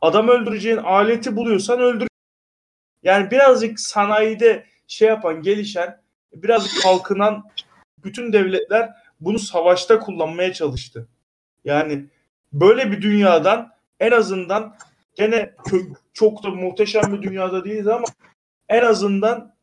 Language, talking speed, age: Turkish, 105 wpm, 30-49